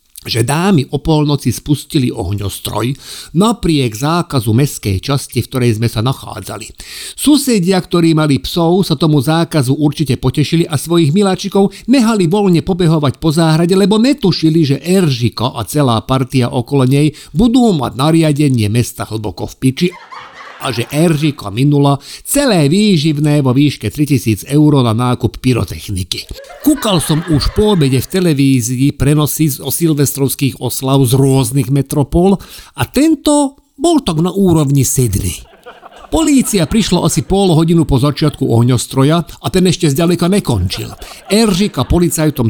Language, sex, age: Slovak, male, 50-69